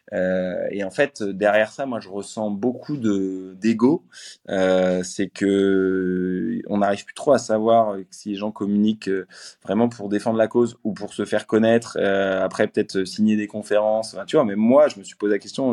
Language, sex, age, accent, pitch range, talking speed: French, male, 20-39, French, 100-120 Hz, 195 wpm